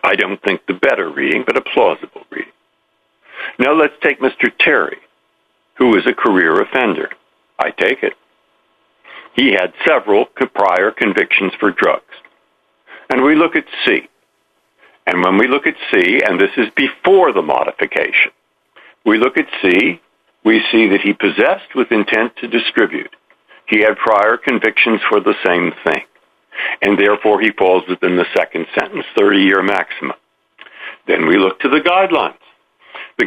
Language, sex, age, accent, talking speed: English, male, 60-79, American, 155 wpm